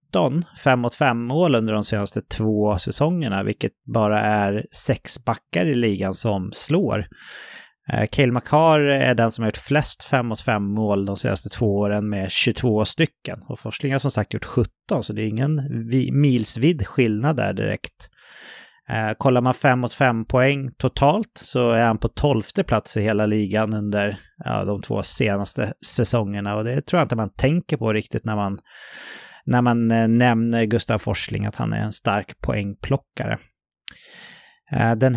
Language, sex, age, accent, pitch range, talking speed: English, male, 30-49, Swedish, 110-135 Hz, 160 wpm